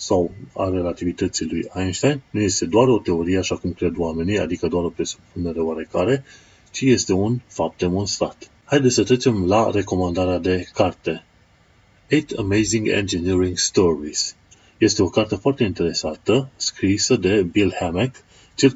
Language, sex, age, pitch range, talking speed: Romanian, male, 30-49, 90-110 Hz, 145 wpm